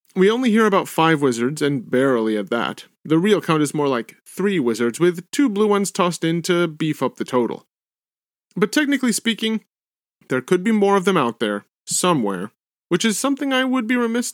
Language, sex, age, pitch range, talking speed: English, male, 30-49, 145-205 Hz, 200 wpm